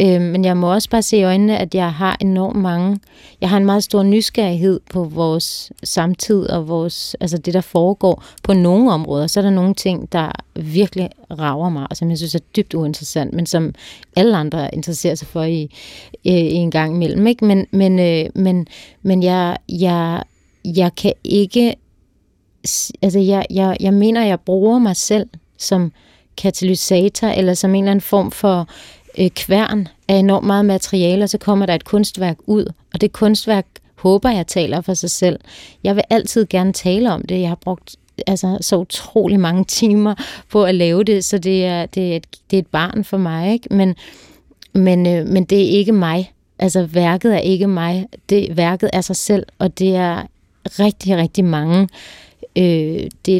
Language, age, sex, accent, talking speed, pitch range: Danish, 30-49, female, native, 185 wpm, 175-200 Hz